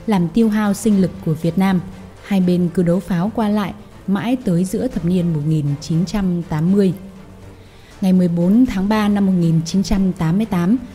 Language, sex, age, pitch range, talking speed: Vietnamese, female, 10-29, 170-210 Hz, 150 wpm